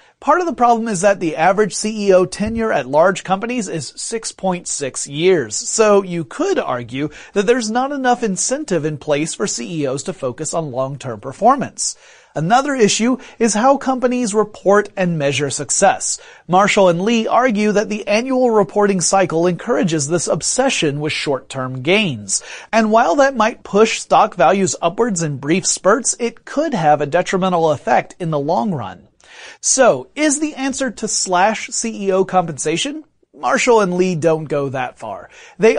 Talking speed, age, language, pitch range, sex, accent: 160 wpm, 30-49, English, 155-225 Hz, male, American